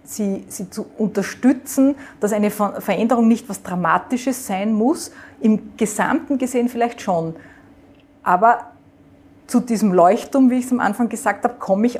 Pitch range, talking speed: 200-240 Hz, 150 wpm